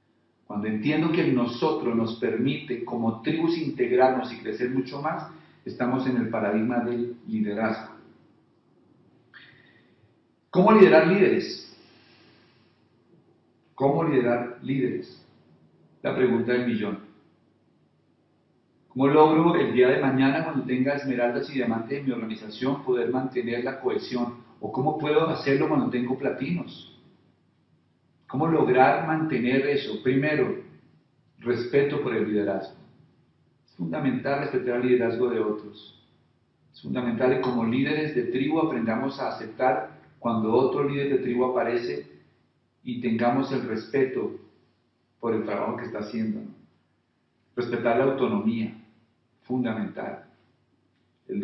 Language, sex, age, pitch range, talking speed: Spanish, male, 40-59, 115-135 Hz, 120 wpm